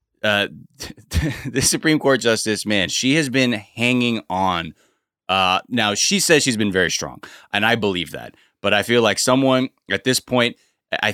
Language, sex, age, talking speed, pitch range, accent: English, male, 20-39, 170 wpm, 95-125 Hz, American